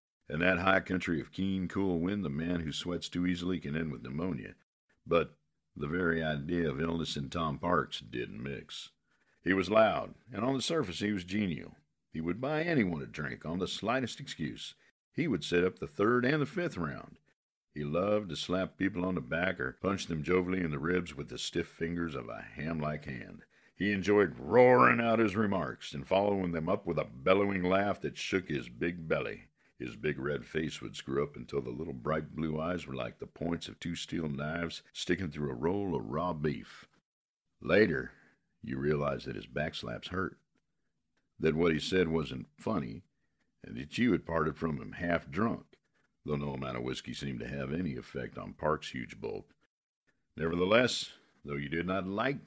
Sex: male